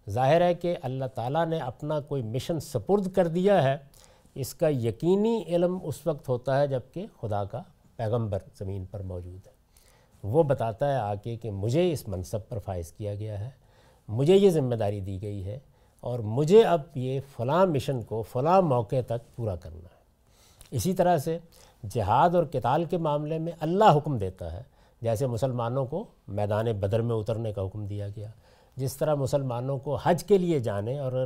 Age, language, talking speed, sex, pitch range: 50-69, Urdu, 185 wpm, male, 105-160 Hz